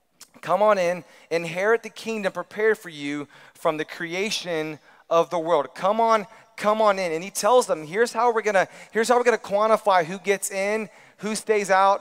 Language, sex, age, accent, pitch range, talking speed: English, male, 30-49, American, 185-235 Hz, 180 wpm